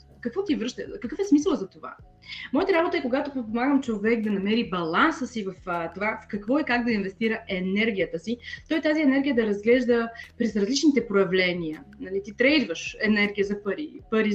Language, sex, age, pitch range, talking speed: Bulgarian, female, 20-39, 200-270 Hz, 180 wpm